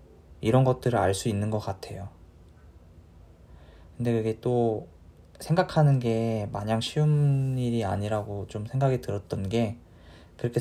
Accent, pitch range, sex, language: native, 85-120 Hz, male, Korean